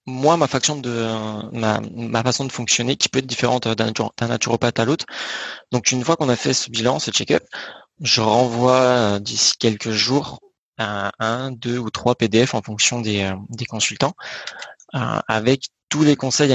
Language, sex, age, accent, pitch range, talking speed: French, male, 20-39, French, 110-130 Hz, 150 wpm